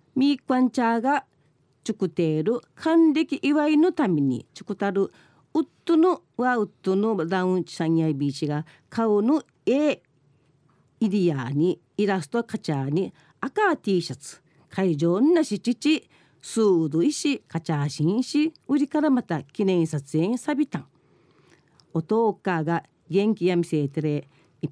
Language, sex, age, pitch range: Japanese, female, 40-59, 160-245 Hz